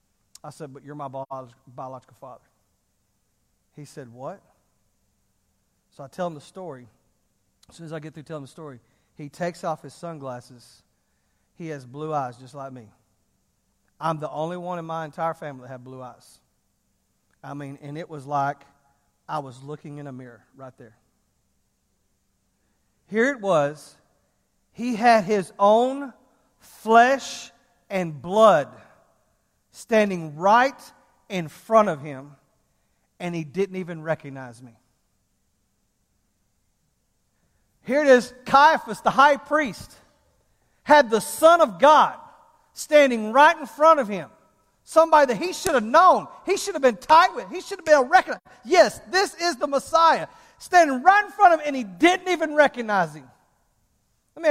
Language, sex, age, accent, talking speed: English, male, 40-59, American, 155 wpm